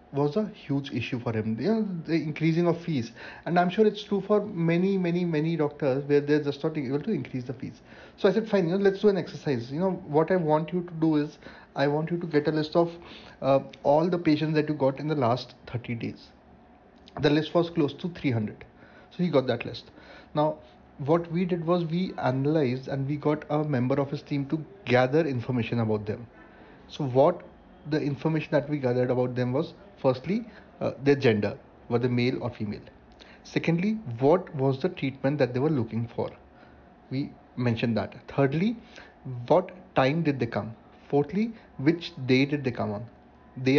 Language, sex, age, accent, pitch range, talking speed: English, male, 30-49, Indian, 125-170 Hz, 200 wpm